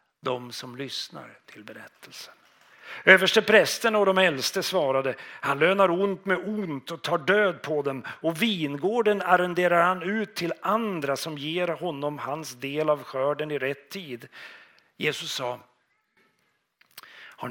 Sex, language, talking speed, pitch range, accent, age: male, Swedish, 140 wpm, 135-180 Hz, native, 40-59